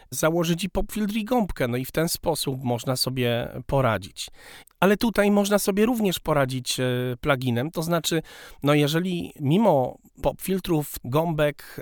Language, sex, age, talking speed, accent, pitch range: Polish, male, 40-59, 135 wpm, native, 125-160 Hz